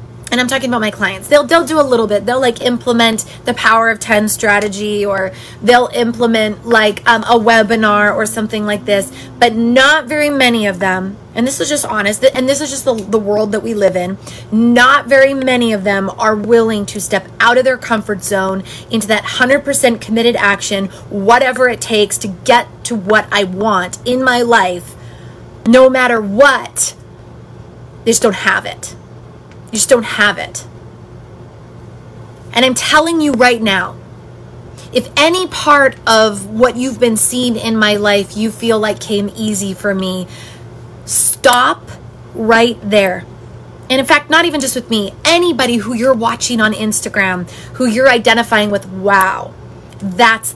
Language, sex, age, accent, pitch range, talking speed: English, female, 20-39, American, 205-245 Hz, 170 wpm